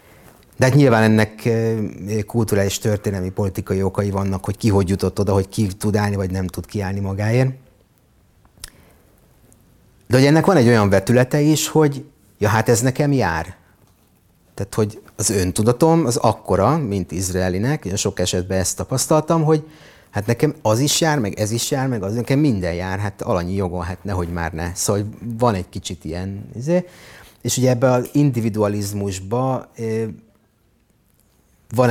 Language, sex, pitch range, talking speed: Hungarian, male, 95-125 Hz, 155 wpm